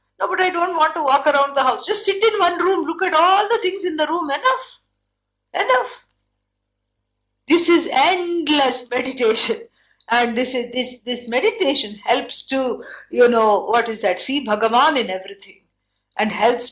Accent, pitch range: Indian, 220-310 Hz